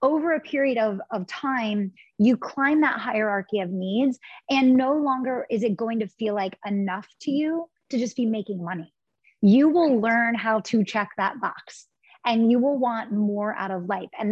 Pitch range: 205-265 Hz